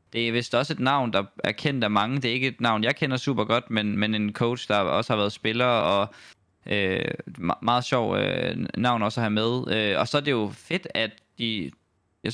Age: 20-39